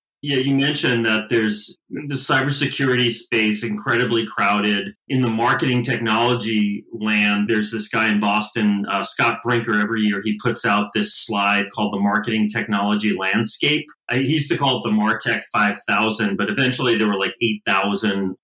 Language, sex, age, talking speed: English, male, 30-49, 160 wpm